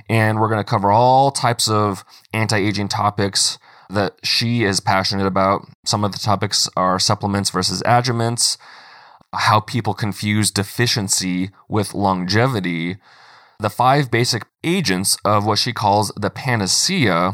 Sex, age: male, 20-39